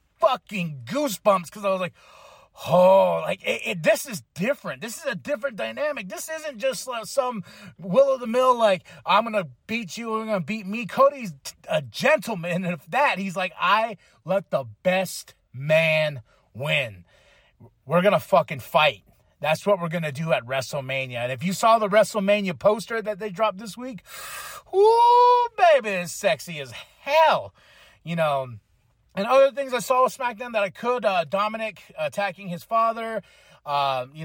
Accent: American